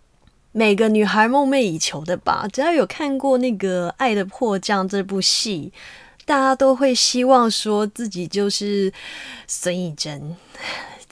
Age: 20-39